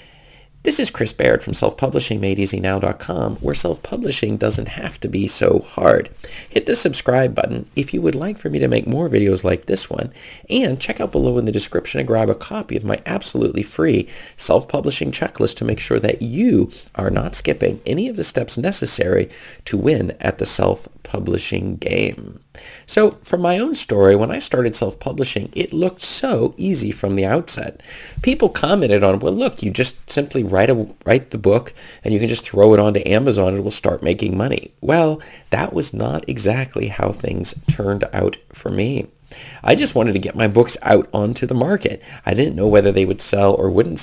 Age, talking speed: 40-59, 190 wpm